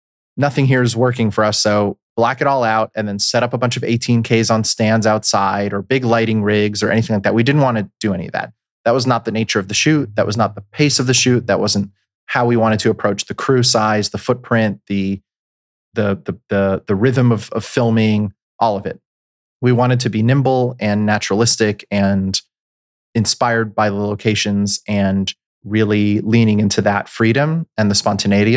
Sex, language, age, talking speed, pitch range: male, English, 30-49, 200 wpm, 100-115 Hz